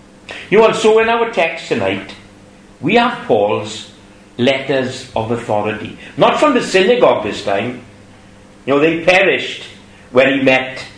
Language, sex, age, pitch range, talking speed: English, male, 60-79, 105-175 Hz, 140 wpm